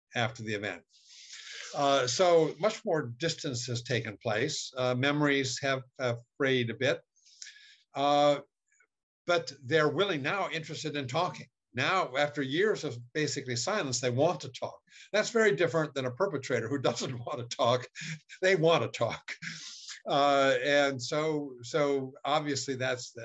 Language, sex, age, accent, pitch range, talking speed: Portuguese, male, 60-79, American, 120-160 Hz, 145 wpm